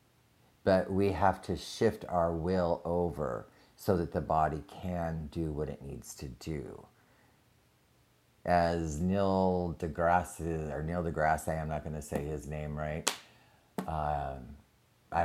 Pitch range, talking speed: 80-100 Hz, 140 wpm